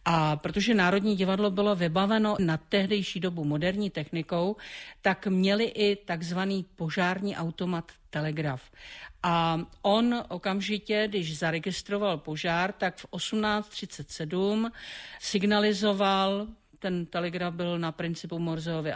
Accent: native